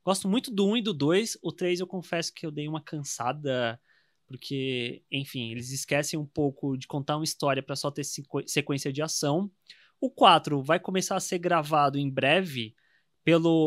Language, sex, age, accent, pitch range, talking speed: Portuguese, male, 20-39, Brazilian, 145-200 Hz, 190 wpm